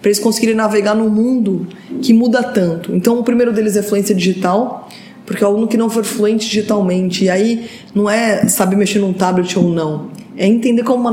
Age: 20-39